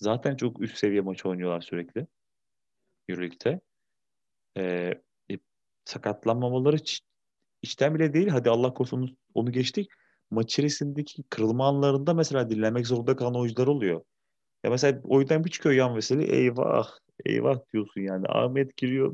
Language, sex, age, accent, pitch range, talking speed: Turkish, male, 30-49, native, 105-140 Hz, 135 wpm